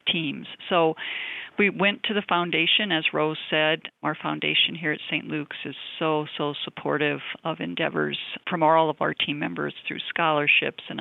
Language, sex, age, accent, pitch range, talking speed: English, female, 50-69, American, 150-180 Hz, 170 wpm